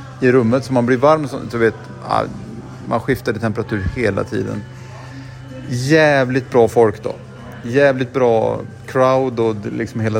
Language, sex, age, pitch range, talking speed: Swedish, male, 30-49, 110-130 Hz, 145 wpm